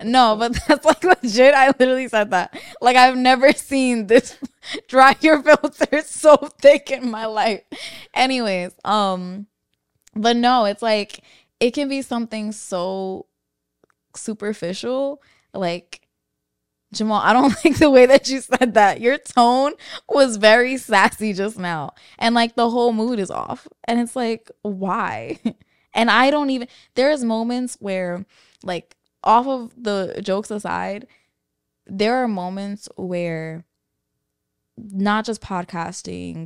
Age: 10-29